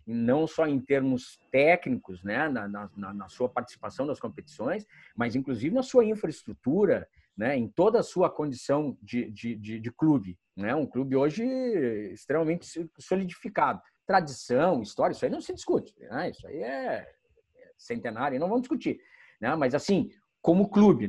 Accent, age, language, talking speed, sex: Brazilian, 50-69, Portuguese, 155 wpm, male